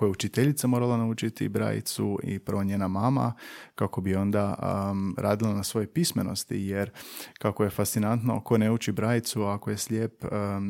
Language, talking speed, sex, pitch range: Croatian, 165 wpm, male, 100-120 Hz